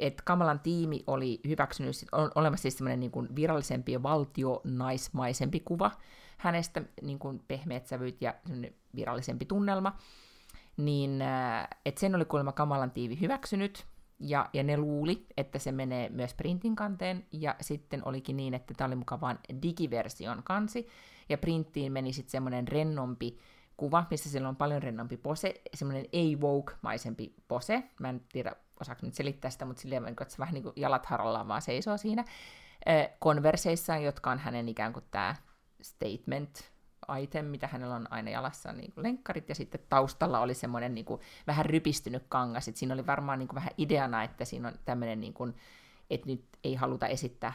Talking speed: 165 wpm